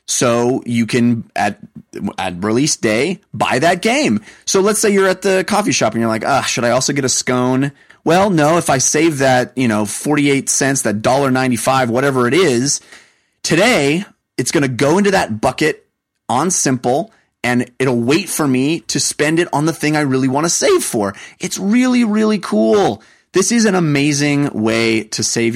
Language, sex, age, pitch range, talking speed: English, male, 30-49, 110-175 Hz, 190 wpm